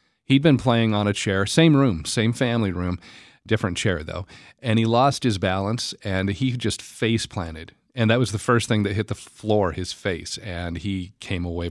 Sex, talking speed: male, 200 wpm